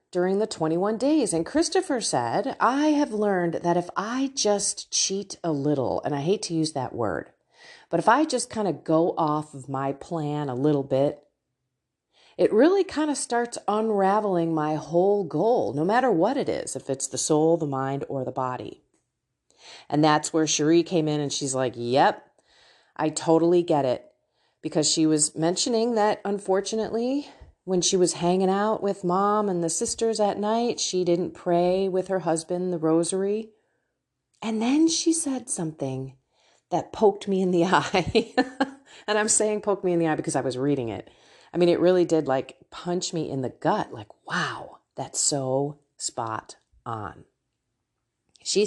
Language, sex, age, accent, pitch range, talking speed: English, female, 40-59, American, 150-210 Hz, 175 wpm